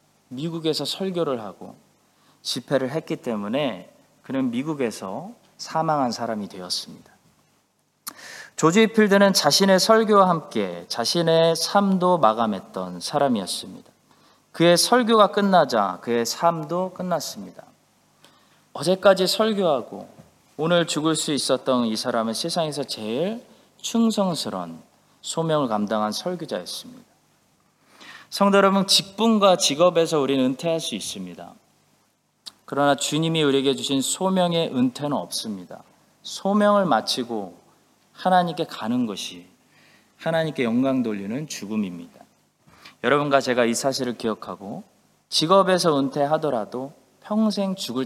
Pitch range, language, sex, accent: 125-190 Hz, Korean, male, native